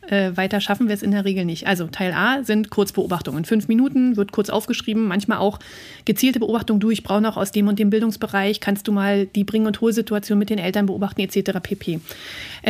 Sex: female